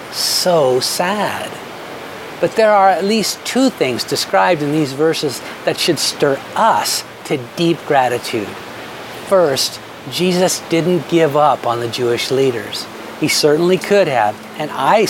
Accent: American